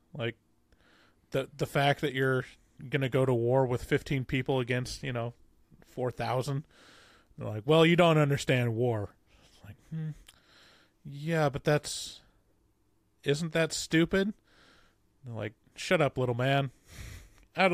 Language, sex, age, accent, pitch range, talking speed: English, male, 20-39, American, 110-140 Hz, 140 wpm